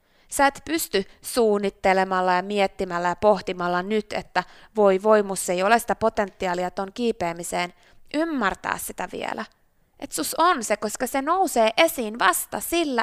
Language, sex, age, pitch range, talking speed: Finnish, female, 20-39, 180-255 Hz, 145 wpm